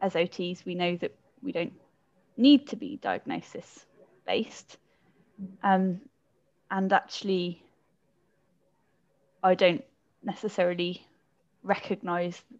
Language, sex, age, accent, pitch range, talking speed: English, female, 10-29, British, 180-215 Hz, 85 wpm